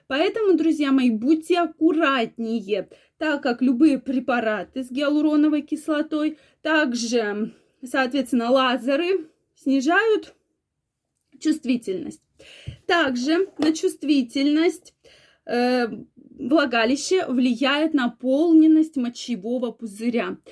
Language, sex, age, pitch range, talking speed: Russian, female, 20-39, 240-310 Hz, 75 wpm